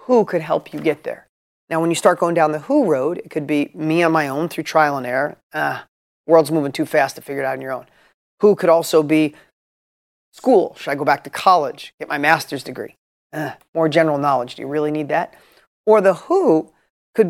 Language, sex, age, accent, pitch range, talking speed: English, male, 30-49, American, 155-210 Hz, 230 wpm